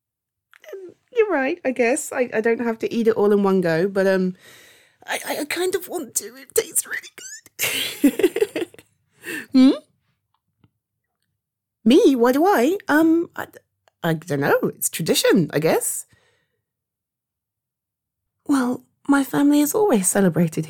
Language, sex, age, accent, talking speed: English, female, 30-49, British, 135 wpm